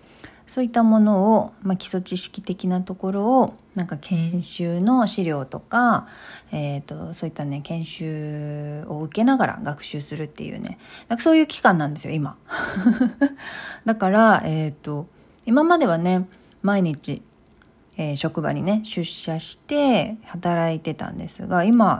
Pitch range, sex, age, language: 160-225 Hz, female, 40-59, Japanese